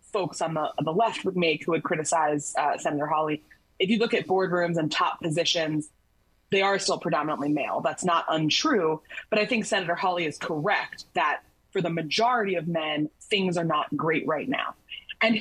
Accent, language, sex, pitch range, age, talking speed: American, English, female, 160-190 Hz, 20-39, 190 wpm